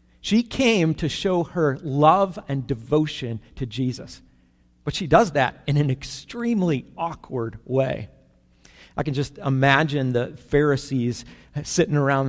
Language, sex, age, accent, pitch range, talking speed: English, male, 50-69, American, 120-155 Hz, 130 wpm